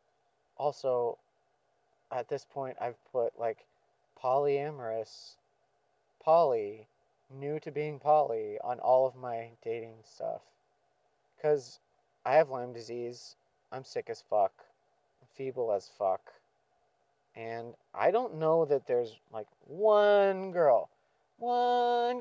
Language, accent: English, American